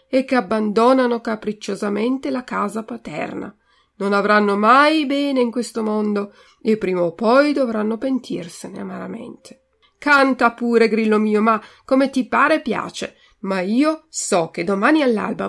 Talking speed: 140 wpm